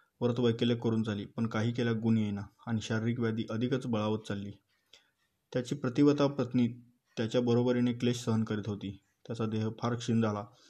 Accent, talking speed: native, 150 wpm